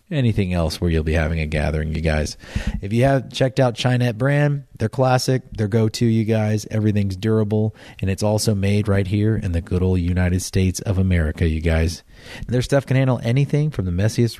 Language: English